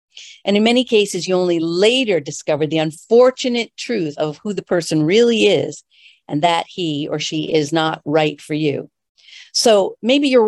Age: 50-69